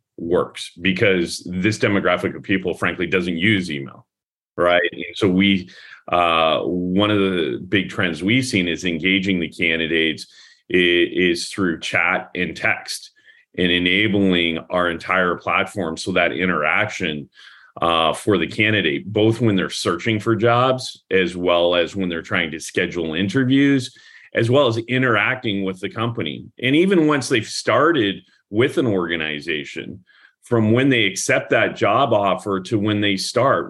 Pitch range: 85-110 Hz